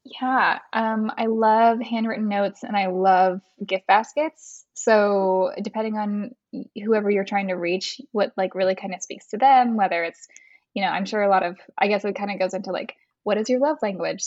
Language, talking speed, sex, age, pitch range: English, 205 wpm, female, 10-29, 190-225 Hz